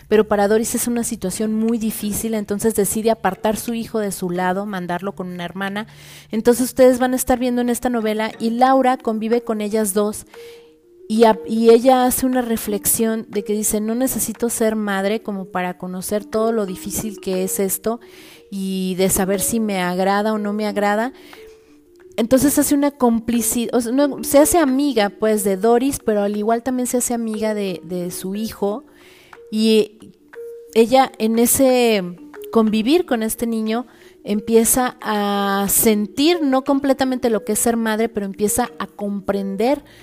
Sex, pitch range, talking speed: female, 200-240 Hz, 165 wpm